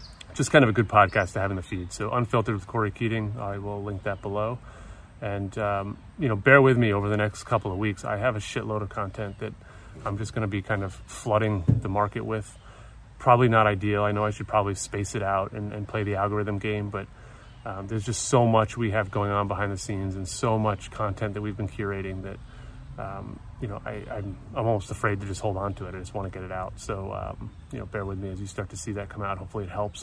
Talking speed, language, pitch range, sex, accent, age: 260 wpm, English, 100-110 Hz, male, American, 30-49